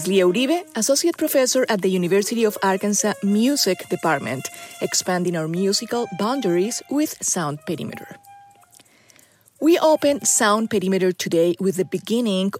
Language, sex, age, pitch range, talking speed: English, female, 30-49, 175-245 Hz, 125 wpm